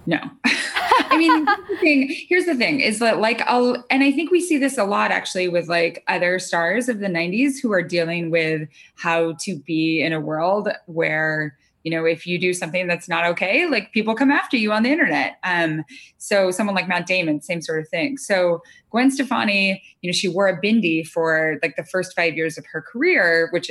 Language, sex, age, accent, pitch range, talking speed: English, female, 20-39, American, 165-240 Hz, 220 wpm